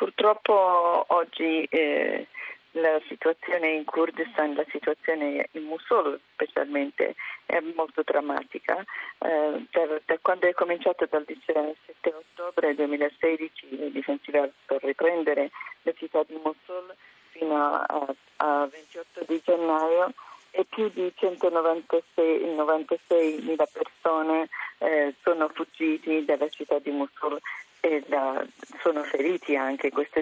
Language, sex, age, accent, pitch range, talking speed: Italian, female, 40-59, native, 150-180 Hz, 115 wpm